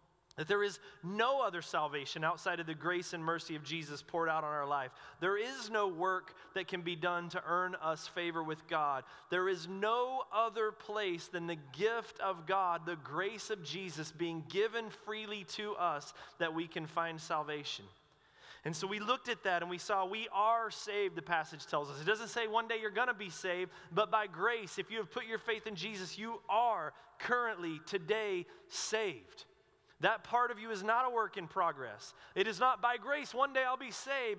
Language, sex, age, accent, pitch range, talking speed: English, male, 30-49, American, 175-225 Hz, 205 wpm